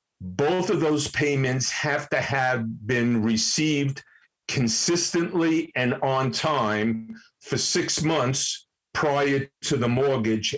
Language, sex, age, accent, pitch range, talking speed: English, male, 50-69, American, 115-150 Hz, 115 wpm